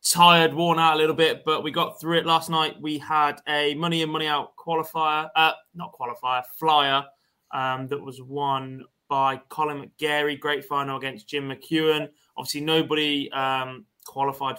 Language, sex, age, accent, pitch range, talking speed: English, male, 20-39, British, 130-155 Hz, 170 wpm